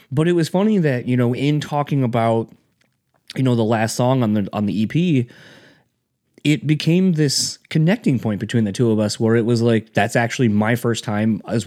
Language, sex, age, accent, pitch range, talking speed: English, male, 30-49, American, 105-130 Hz, 205 wpm